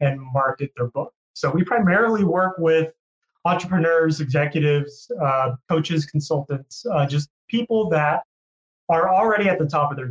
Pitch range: 135-160 Hz